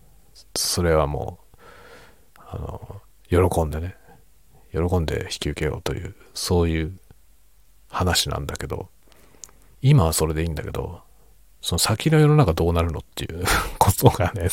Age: 40-59